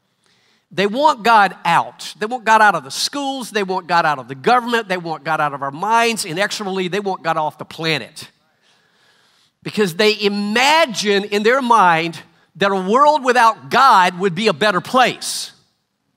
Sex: male